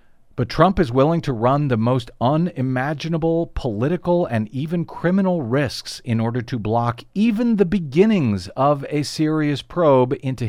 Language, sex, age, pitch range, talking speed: English, male, 50-69, 110-155 Hz, 150 wpm